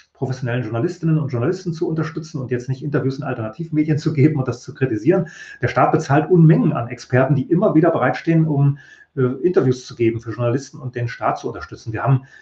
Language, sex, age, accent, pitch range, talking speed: German, male, 30-49, German, 125-155 Hz, 205 wpm